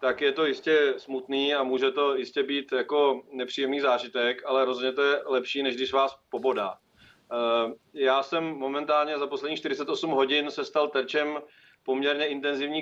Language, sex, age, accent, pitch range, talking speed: Czech, male, 30-49, native, 135-155 Hz, 160 wpm